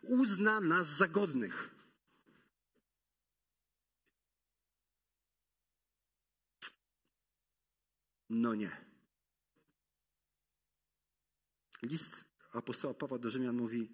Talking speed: 50 wpm